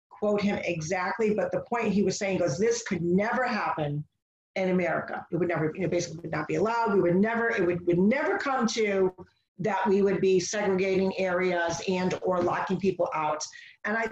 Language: English